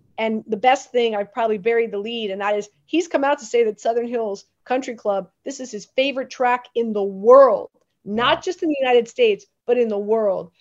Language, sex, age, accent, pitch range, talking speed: English, female, 30-49, American, 215-255 Hz, 225 wpm